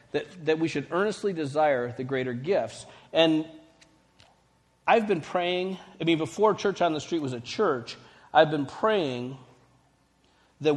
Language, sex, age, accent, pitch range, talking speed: English, male, 40-59, American, 140-190 Hz, 150 wpm